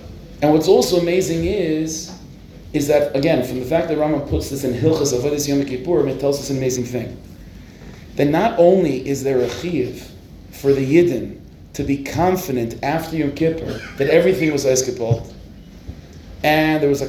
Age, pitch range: 30-49, 135-175 Hz